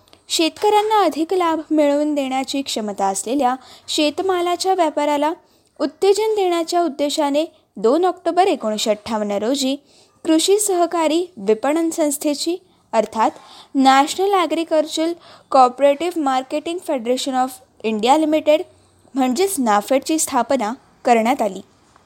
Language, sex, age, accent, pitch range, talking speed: Marathi, female, 20-39, native, 240-330 Hz, 90 wpm